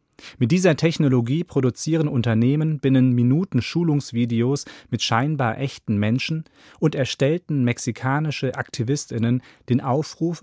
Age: 30-49